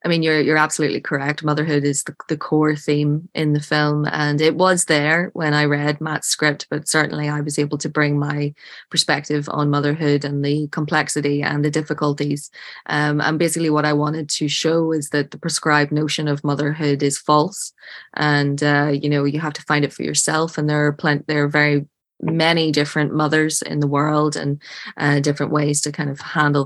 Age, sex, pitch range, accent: 20-39, female, 145-155 Hz, Irish